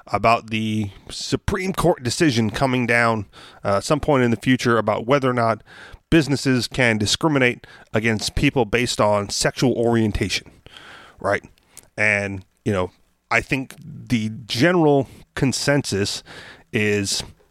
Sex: male